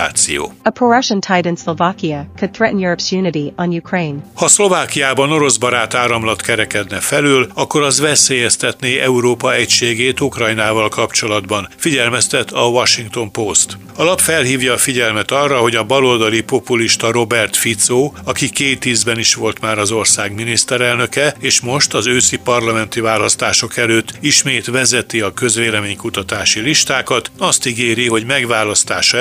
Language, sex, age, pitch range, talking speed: Hungarian, male, 60-79, 110-140 Hz, 110 wpm